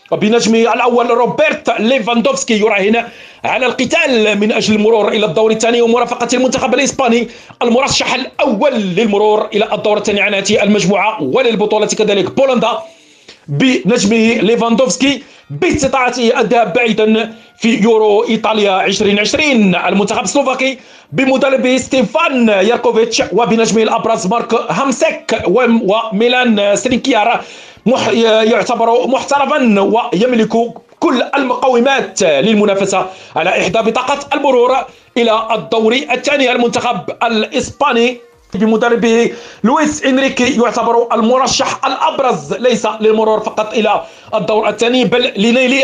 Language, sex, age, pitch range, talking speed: Arabic, male, 40-59, 220-255 Hz, 100 wpm